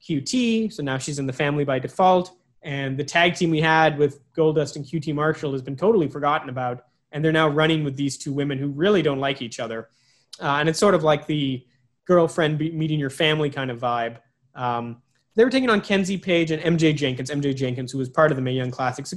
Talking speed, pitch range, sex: 235 wpm, 140-165 Hz, male